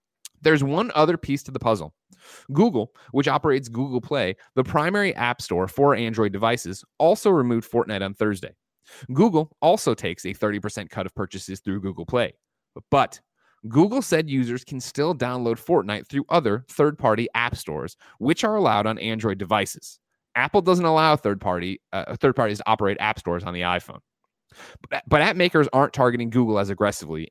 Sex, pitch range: male, 105-140 Hz